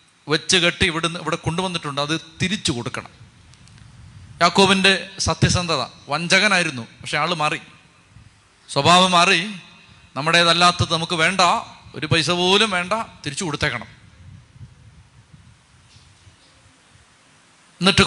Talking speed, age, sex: 85 wpm, 30-49, male